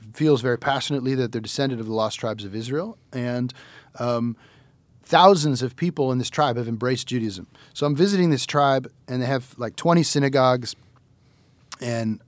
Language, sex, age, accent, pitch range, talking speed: English, male, 40-59, American, 120-145 Hz, 170 wpm